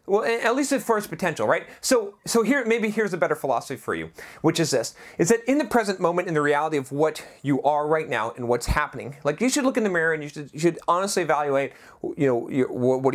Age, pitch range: 30-49, 145-205 Hz